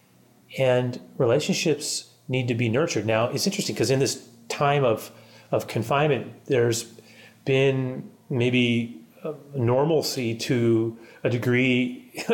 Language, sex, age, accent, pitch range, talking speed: English, male, 30-49, American, 120-160 Hz, 115 wpm